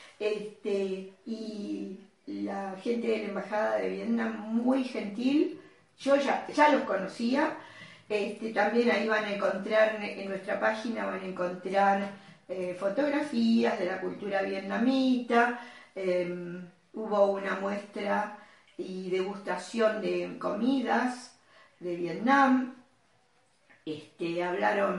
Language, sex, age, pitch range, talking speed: Spanish, female, 40-59, 185-245 Hz, 105 wpm